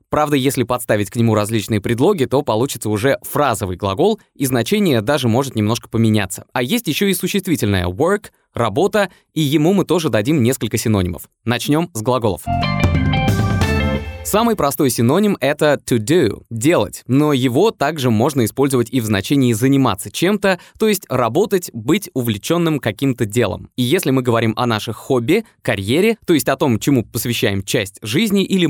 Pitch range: 115-155 Hz